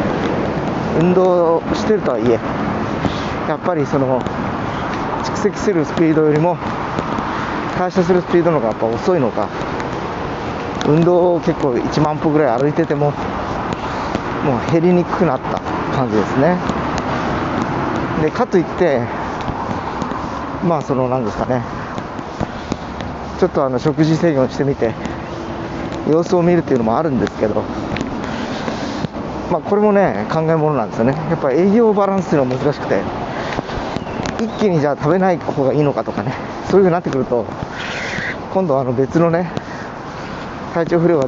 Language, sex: Japanese, male